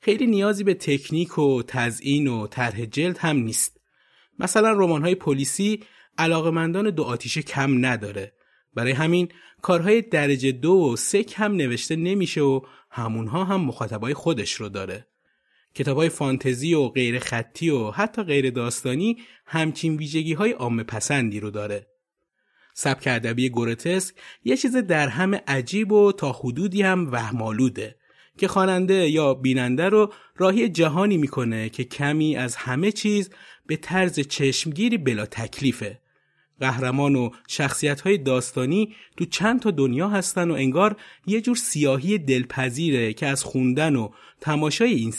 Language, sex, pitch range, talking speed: Persian, male, 125-185 Hz, 140 wpm